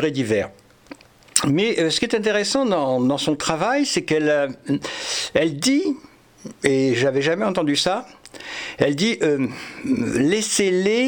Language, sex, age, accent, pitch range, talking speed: French, male, 60-79, French, 135-195 Hz, 135 wpm